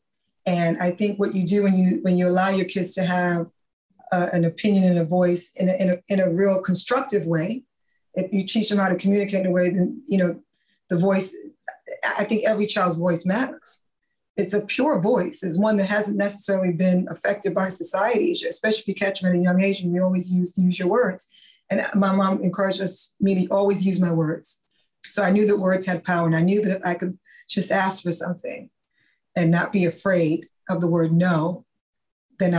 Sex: female